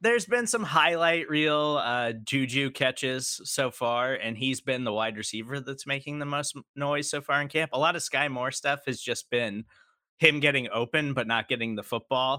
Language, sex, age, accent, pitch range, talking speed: English, male, 20-39, American, 125-165 Hz, 205 wpm